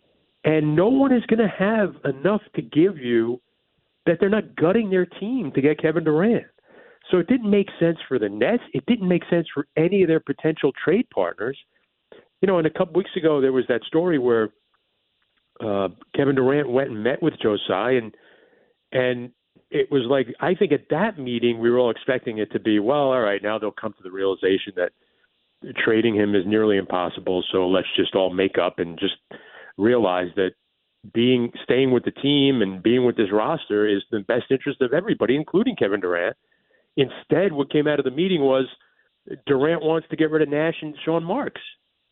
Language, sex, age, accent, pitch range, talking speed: English, male, 40-59, American, 115-170 Hz, 200 wpm